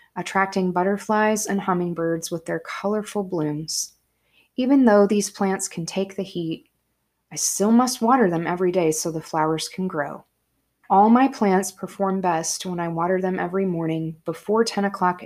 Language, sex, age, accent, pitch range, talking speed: English, female, 20-39, American, 165-200 Hz, 165 wpm